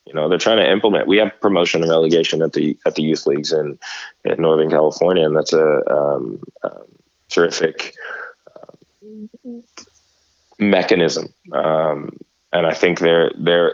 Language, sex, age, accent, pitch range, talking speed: English, male, 20-39, American, 85-105 Hz, 155 wpm